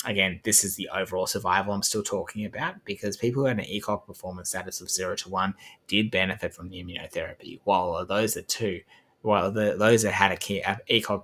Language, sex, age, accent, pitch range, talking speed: English, male, 20-39, Australian, 95-110 Hz, 210 wpm